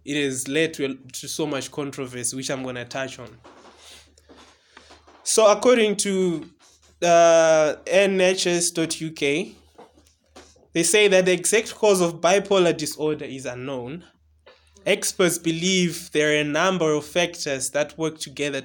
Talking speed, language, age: 130 wpm, English, 20-39